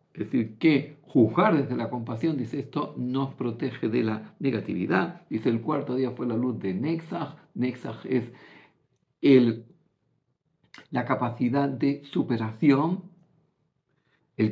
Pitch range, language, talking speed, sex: 115-145 Hz, Greek, 130 wpm, male